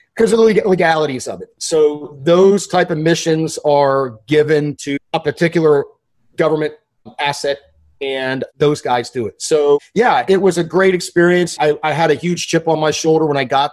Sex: male